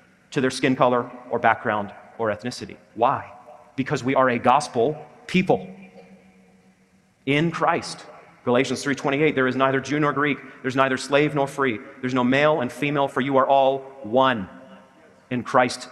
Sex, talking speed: male, 160 wpm